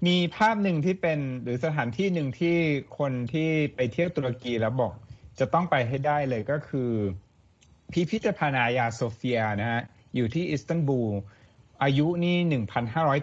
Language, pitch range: Thai, 110-145 Hz